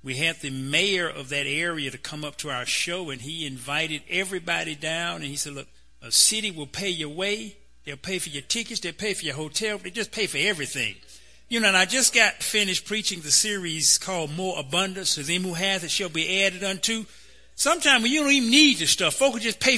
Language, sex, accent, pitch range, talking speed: English, male, American, 145-200 Hz, 235 wpm